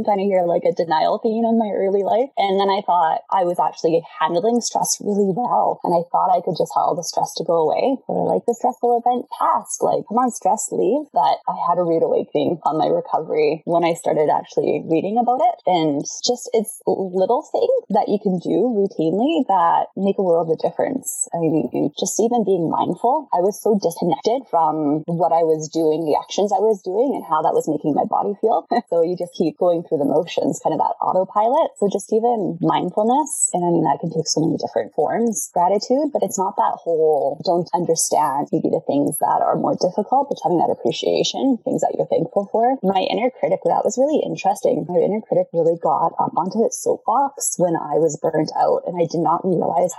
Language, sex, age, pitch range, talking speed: English, female, 20-39, 170-260 Hz, 220 wpm